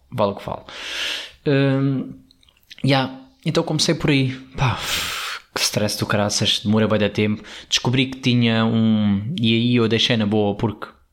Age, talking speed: 20-39, 175 wpm